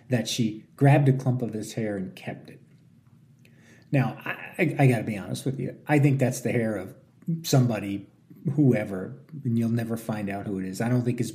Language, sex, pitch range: English, male, 110-130 Hz